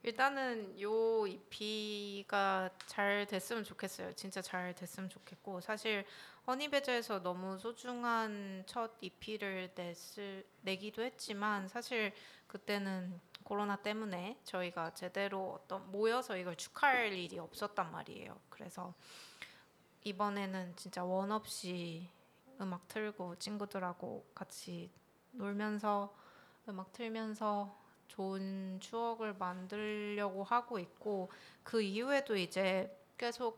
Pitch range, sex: 185-220 Hz, female